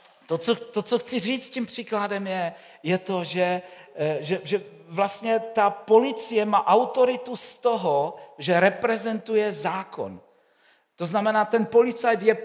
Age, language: 50-69, Czech